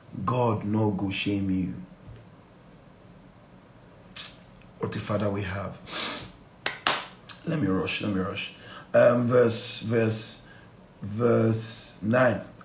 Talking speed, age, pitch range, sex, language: 90 wpm, 50-69, 115-155 Hz, male, English